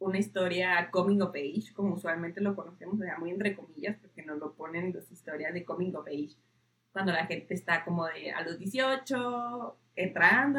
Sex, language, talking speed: female, Spanish, 195 wpm